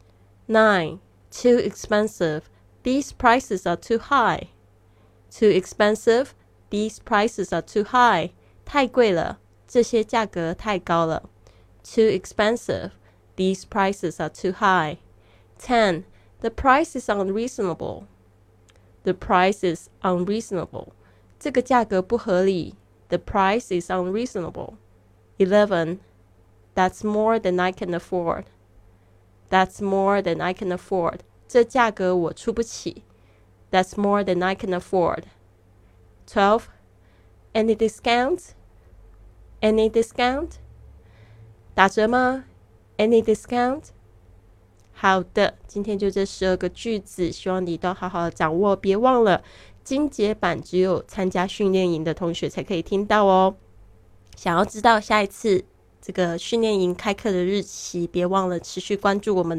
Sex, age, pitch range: female, 20-39, 165-215 Hz